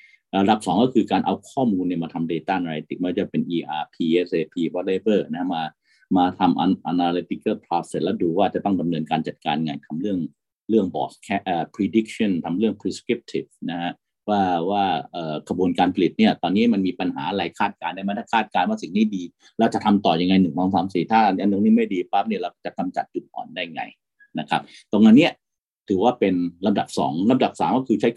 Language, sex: Thai, male